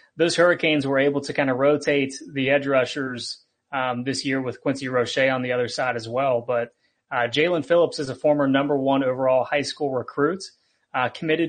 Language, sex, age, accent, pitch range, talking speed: English, male, 30-49, American, 130-145 Hz, 200 wpm